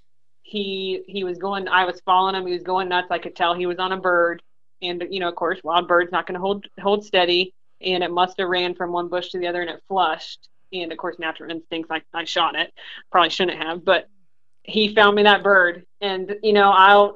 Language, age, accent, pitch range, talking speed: English, 30-49, American, 180-210 Hz, 240 wpm